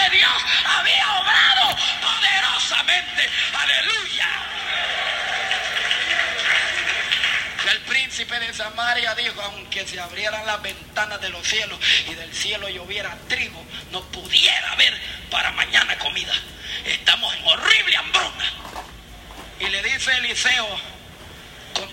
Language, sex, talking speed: Spanish, male, 105 wpm